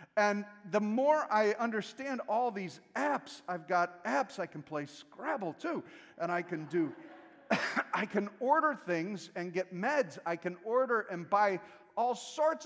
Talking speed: 160 wpm